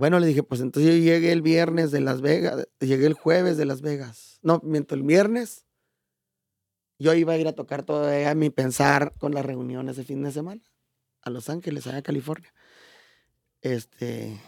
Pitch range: 125-160 Hz